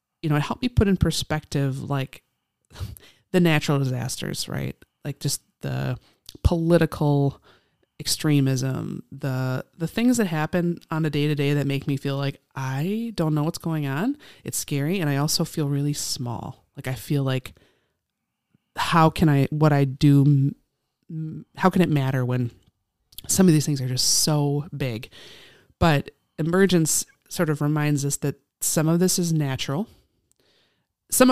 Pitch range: 130-160 Hz